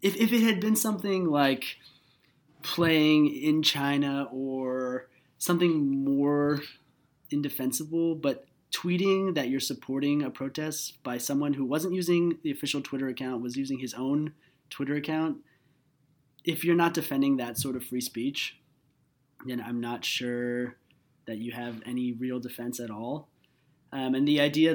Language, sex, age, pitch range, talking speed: English, male, 20-39, 130-150 Hz, 145 wpm